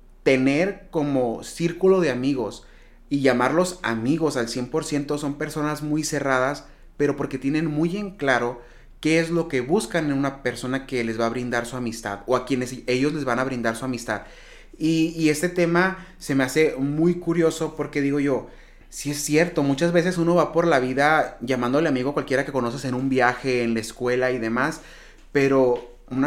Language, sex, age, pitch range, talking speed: Spanish, male, 30-49, 125-150 Hz, 190 wpm